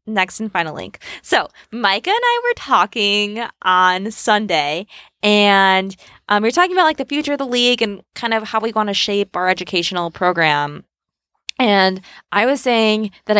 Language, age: English, 20-39